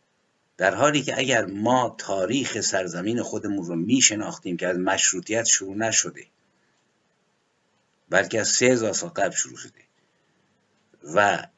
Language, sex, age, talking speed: Persian, male, 50-69, 120 wpm